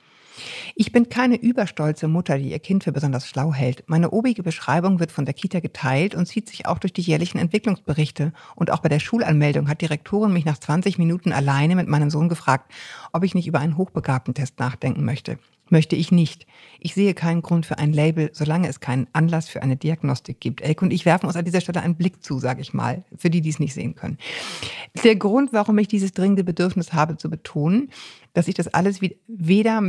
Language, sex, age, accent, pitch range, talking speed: German, female, 50-69, German, 155-190 Hz, 215 wpm